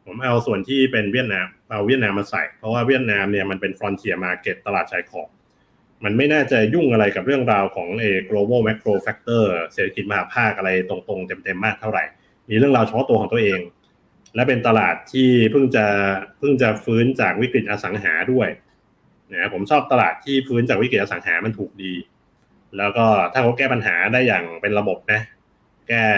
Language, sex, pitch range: Thai, male, 105-130 Hz